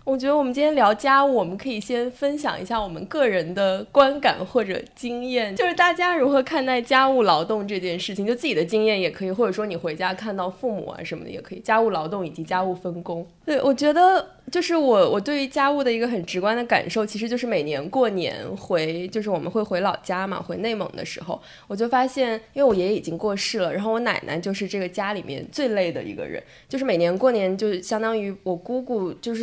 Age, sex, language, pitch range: 20-39, female, English, 180-240 Hz